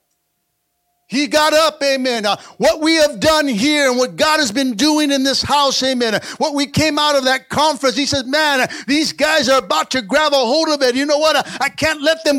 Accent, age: American, 50-69